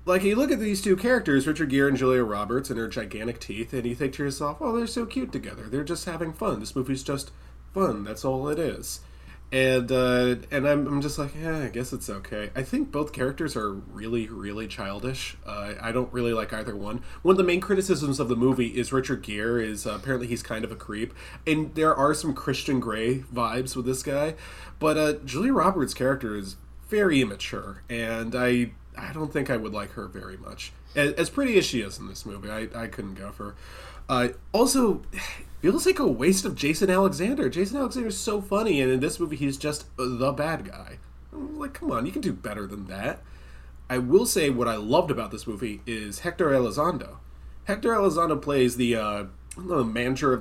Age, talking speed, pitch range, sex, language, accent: 20-39, 215 wpm, 115-155 Hz, male, English, American